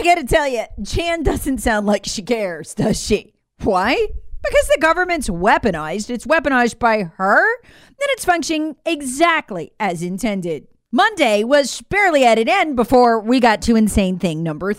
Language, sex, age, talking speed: English, female, 40-59, 160 wpm